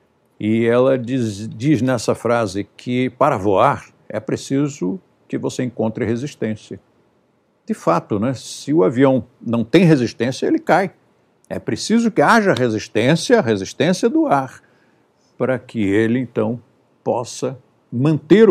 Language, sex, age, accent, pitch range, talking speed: Portuguese, male, 60-79, Brazilian, 105-130 Hz, 130 wpm